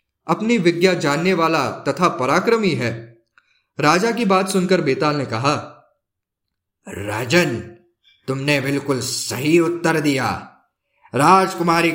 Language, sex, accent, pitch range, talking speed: Hindi, male, native, 135-185 Hz, 105 wpm